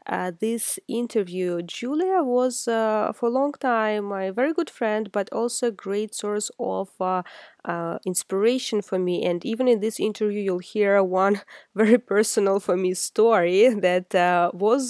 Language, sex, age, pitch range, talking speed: English, female, 20-39, 195-255 Hz, 165 wpm